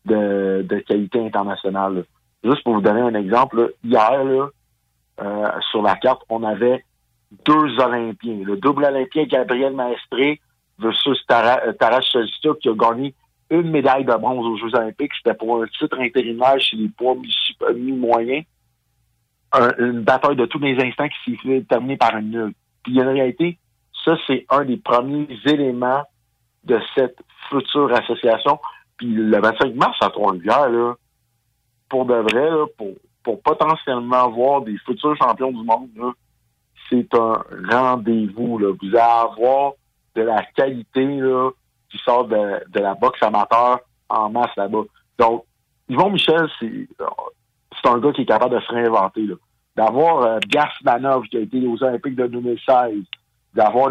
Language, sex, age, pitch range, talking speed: French, male, 50-69, 115-140 Hz, 160 wpm